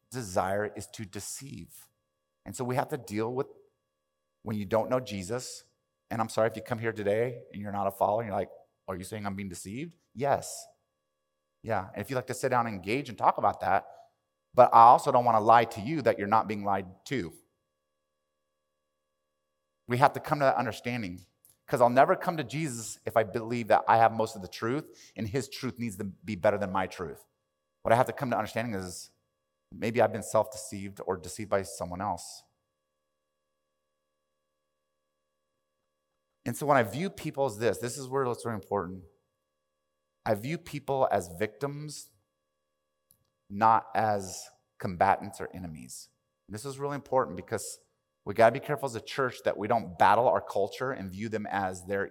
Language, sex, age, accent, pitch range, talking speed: English, male, 30-49, American, 75-120 Hz, 190 wpm